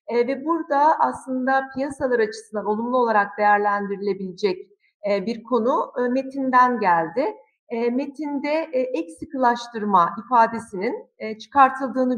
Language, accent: Turkish, native